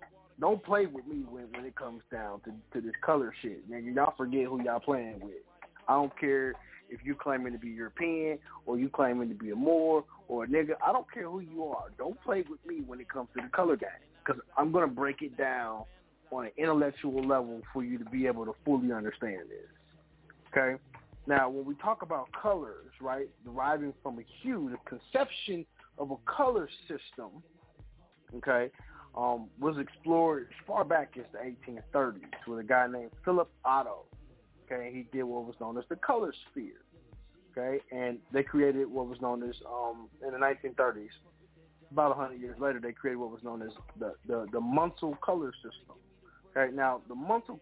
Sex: male